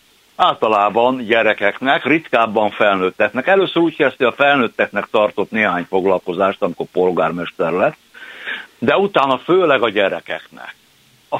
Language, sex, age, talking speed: Hungarian, male, 60-79, 115 wpm